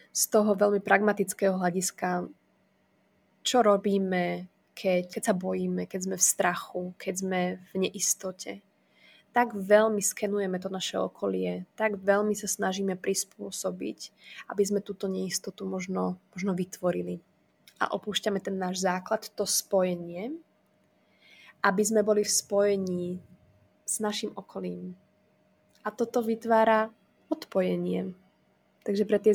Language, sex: Slovak, female